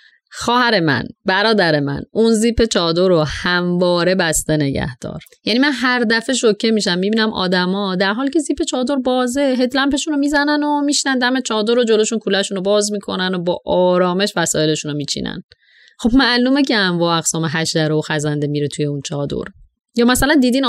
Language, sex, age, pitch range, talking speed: Persian, female, 30-49, 170-240 Hz, 180 wpm